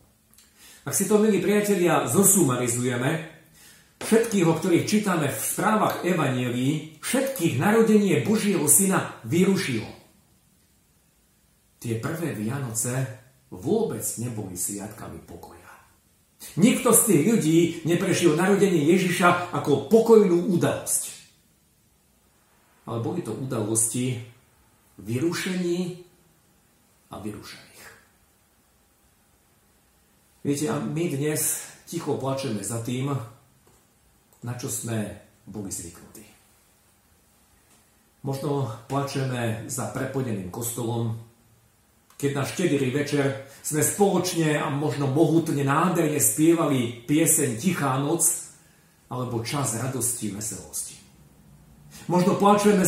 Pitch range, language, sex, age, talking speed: 115-170 Hz, Slovak, male, 50-69, 90 wpm